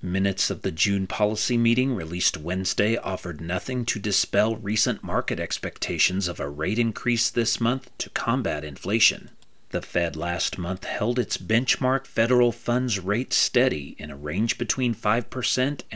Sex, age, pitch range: male, 40-59, 95-125 Hz